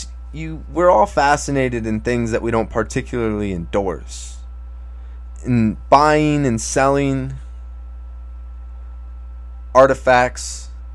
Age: 20-39